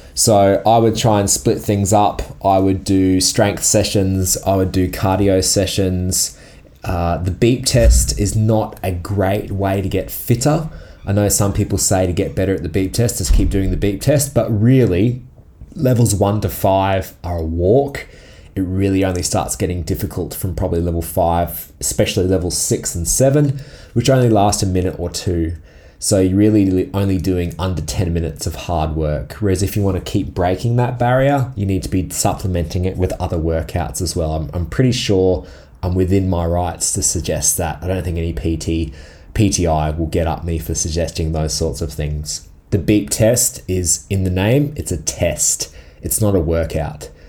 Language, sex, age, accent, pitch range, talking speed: English, male, 20-39, Australian, 85-100 Hz, 190 wpm